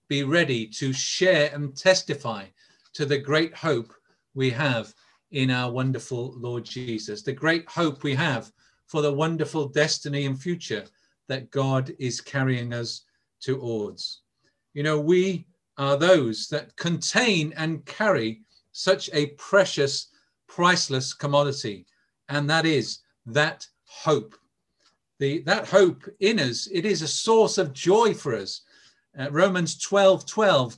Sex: male